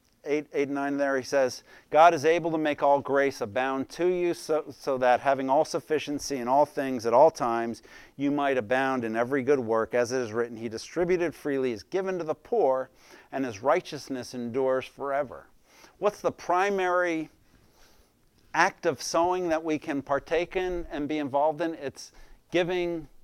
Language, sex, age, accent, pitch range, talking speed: English, male, 50-69, American, 130-160 Hz, 180 wpm